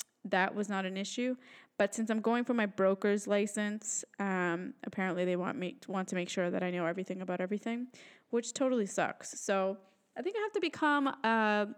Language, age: English, 10-29